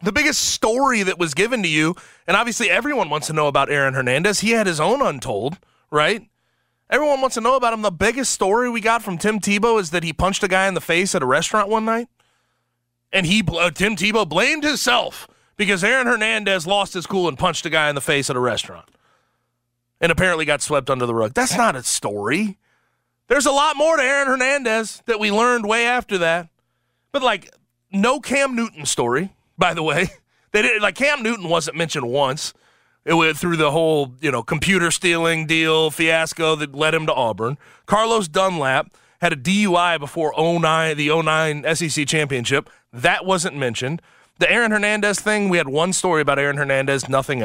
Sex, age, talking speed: male, 30-49, 200 wpm